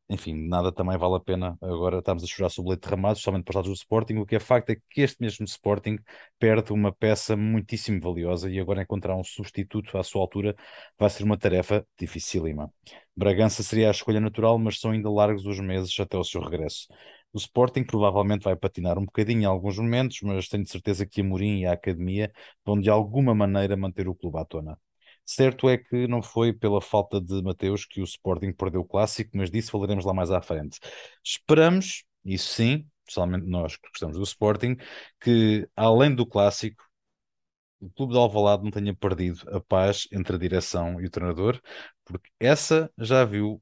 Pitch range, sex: 95-110 Hz, male